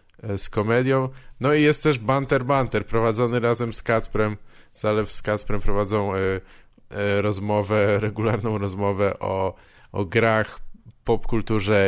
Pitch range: 100-120 Hz